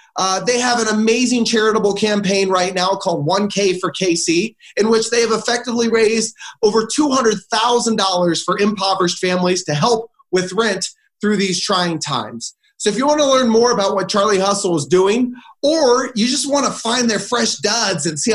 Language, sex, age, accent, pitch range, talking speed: English, male, 30-49, American, 165-225 Hz, 185 wpm